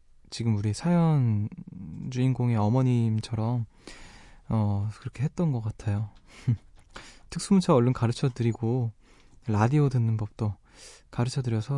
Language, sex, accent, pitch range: Korean, male, native, 110-145 Hz